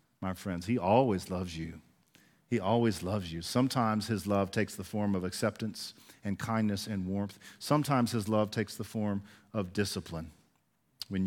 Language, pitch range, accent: English, 110-150 Hz, American